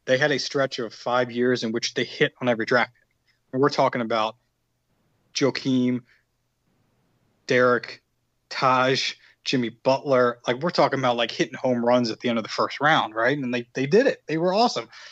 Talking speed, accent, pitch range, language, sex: 185 wpm, American, 115-130 Hz, English, male